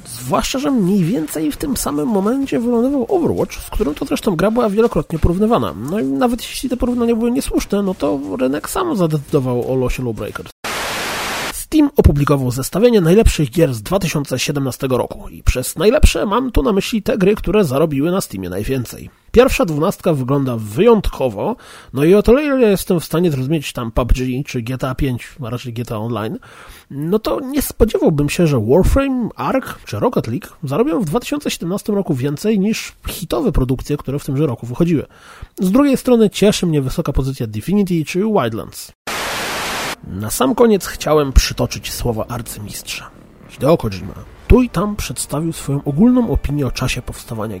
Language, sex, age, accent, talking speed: Polish, male, 30-49, native, 165 wpm